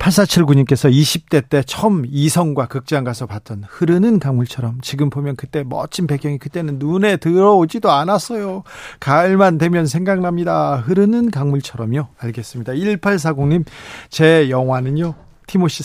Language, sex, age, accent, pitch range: Korean, male, 40-59, native, 140-175 Hz